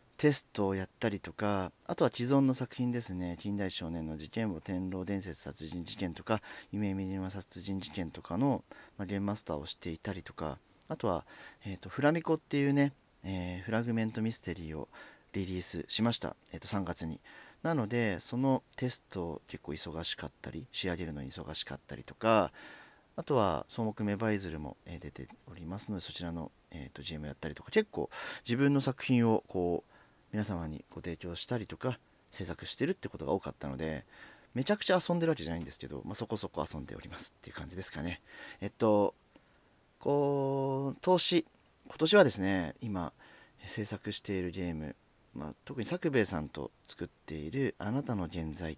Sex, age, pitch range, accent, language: male, 40-59, 85-120 Hz, native, Japanese